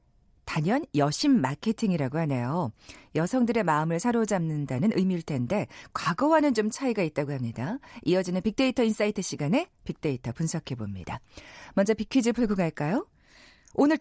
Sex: female